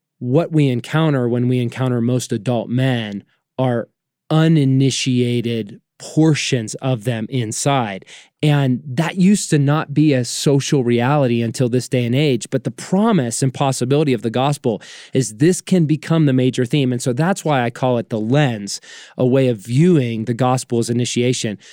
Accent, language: American, English